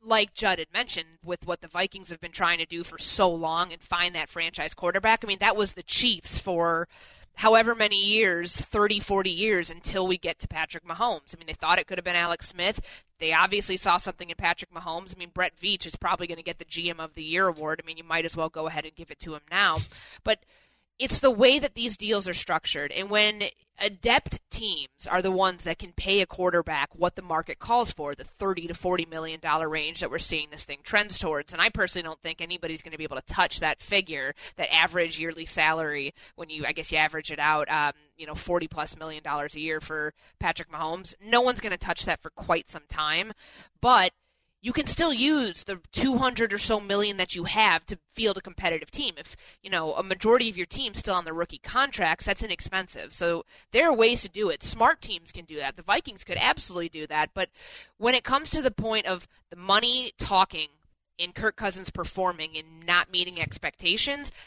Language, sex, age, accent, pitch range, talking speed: English, female, 20-39, American, 160-205 Hz, 225 wpm